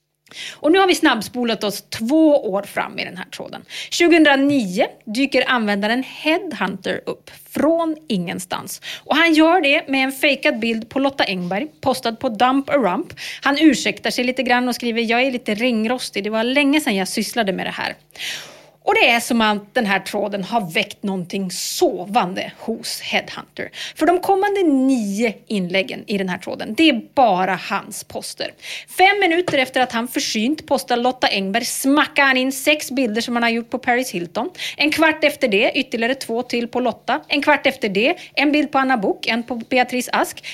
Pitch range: 225-295 Hz